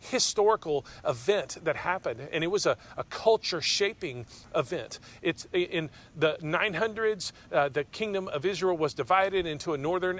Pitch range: 145-190 Hz